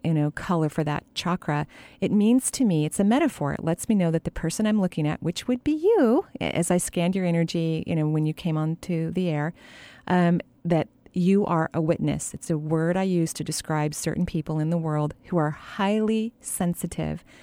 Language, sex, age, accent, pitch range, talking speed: English, female, 40-59, American, 160-200 Hz, 215 wpm